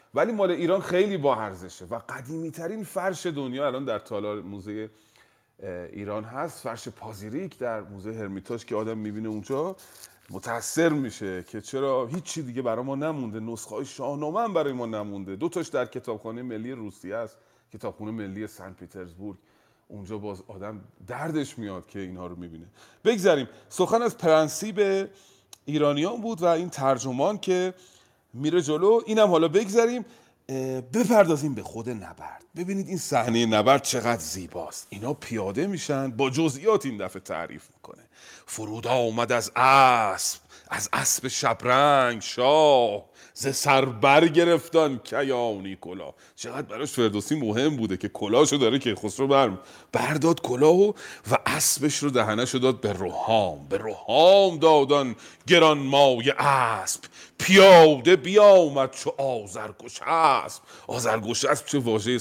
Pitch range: 105-160 Hz